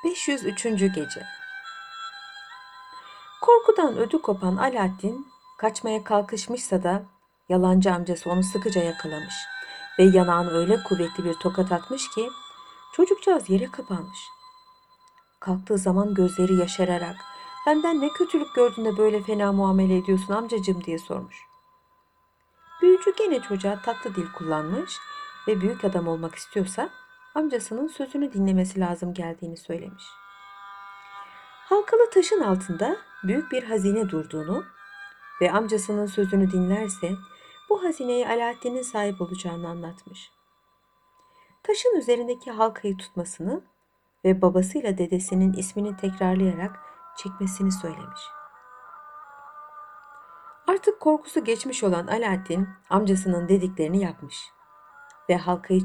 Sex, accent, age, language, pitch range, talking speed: female, native, 60-79, Turkish, 185-290 Hz, 100 wpm